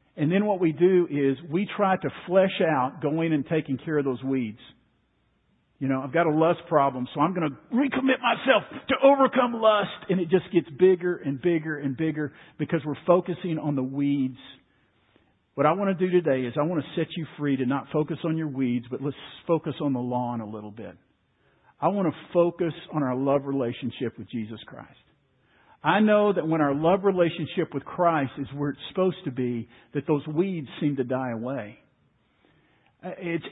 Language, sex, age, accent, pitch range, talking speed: English, male, 50-69, American, 135-180 Hz, 200 wpm